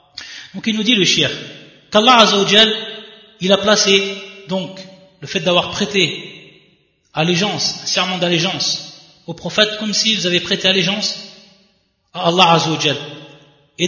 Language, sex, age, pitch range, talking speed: French, male, 30-49, 155-195 Hz, 135 wpm